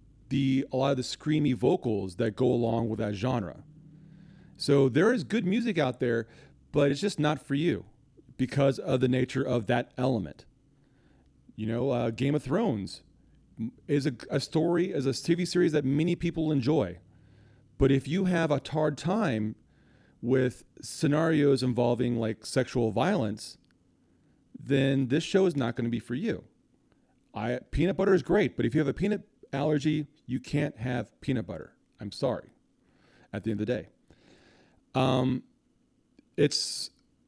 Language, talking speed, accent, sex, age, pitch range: English, 165 wpm, American, male, 40-59, 120-150 Hz